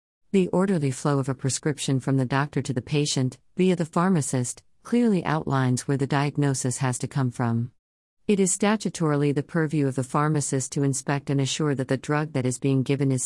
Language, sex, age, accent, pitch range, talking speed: English, female, 50-69, American, 130-160 Hz, 200 wpm